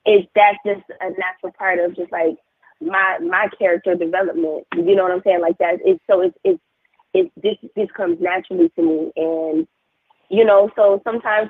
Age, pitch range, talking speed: 20-39, 165-215 Hz, 195 wpm